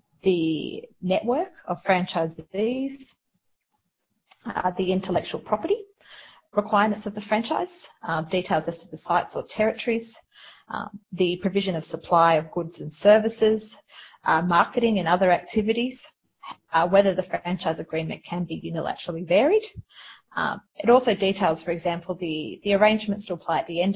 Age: 30-49